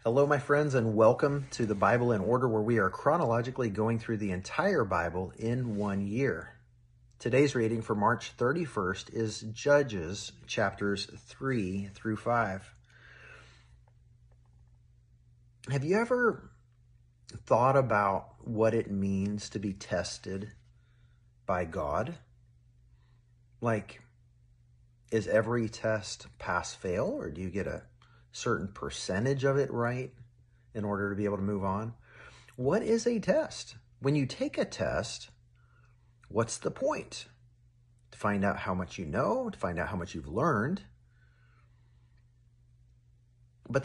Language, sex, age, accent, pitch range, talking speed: English, male, 40-59, American, 100-120 Hz, 130 wpm